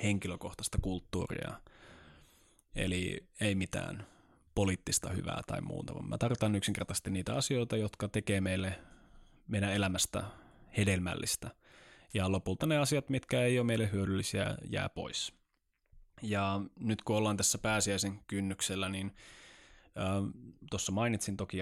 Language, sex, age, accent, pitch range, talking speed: Finnish, male, 20-39, native, 95-110 Hz, 120 wpm